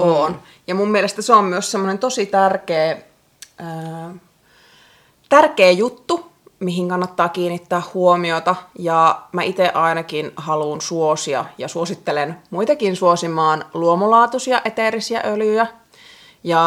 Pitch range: 160-190 Hz